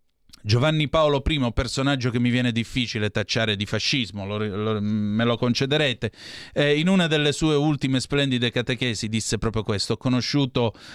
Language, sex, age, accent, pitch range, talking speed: Italian, male, 30-49, native, 110-155 Hz, 150 wpm